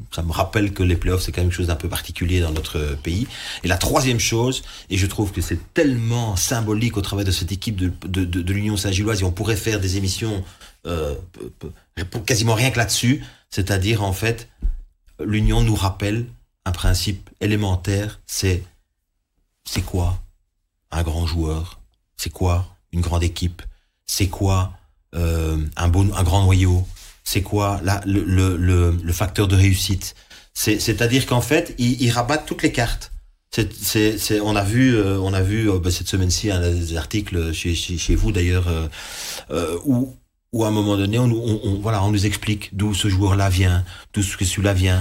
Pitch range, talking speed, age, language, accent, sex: 90-110 Hz, 195 wpm, 40-59, French, French, male